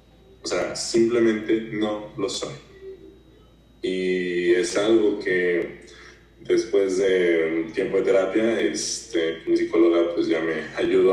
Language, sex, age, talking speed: English, male, 20-39, 120 wpm